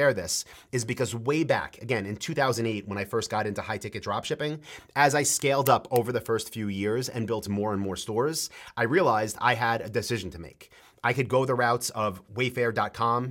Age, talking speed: 30-49, 205 wpm